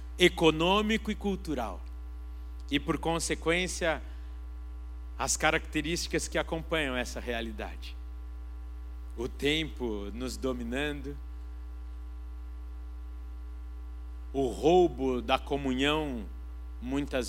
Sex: male